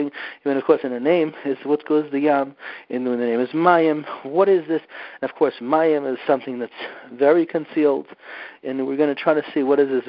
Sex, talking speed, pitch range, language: male, 230 wpm, 135-165 Hz, English